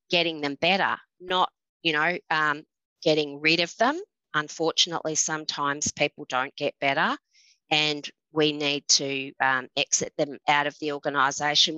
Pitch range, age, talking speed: 150-185 Hz, 30-49, 145 wpm